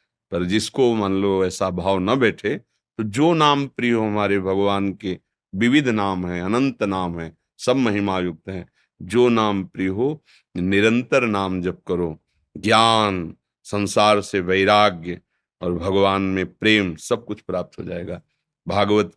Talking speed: 150 wpm